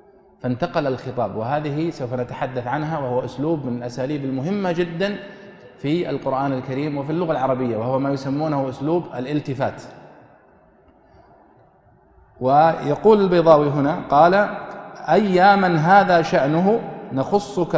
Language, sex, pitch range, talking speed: Arabic, male, 130-175 Hz, 105 wpm